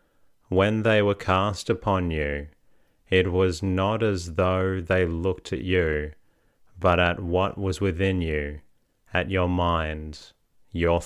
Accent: Australian